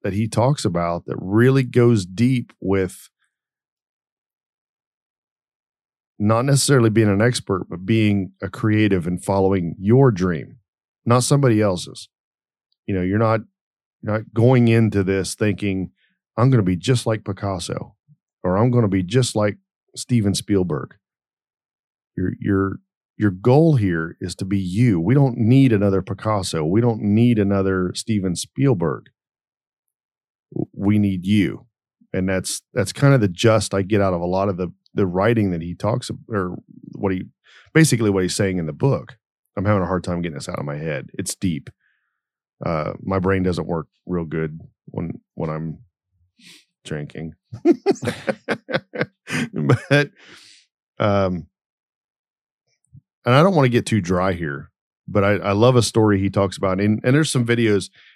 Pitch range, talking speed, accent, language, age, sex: 95-120 Hz, 155 wpm, American, English, 40-59, male